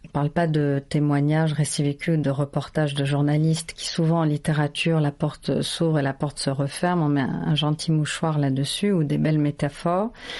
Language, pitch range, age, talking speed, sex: French, 160-195 Hz, 40-59, 195 wpm, female